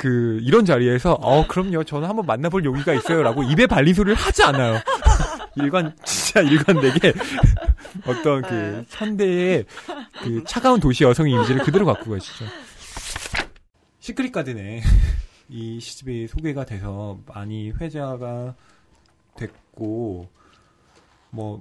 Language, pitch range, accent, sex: Korean, 110-160 Hz, native, male